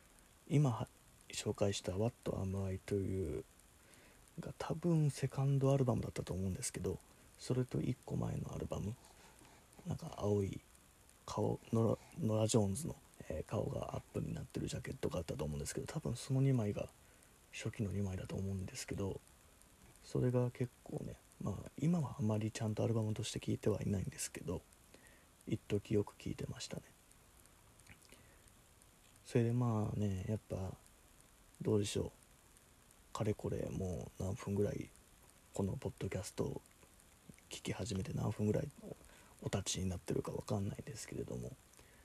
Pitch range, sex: 95-125 Hz, male